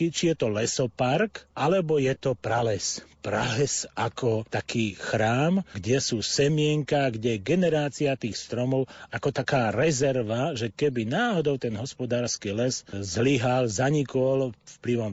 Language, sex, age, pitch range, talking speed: Slovak, male, 40-59, 120-150 Hz, 125 wpm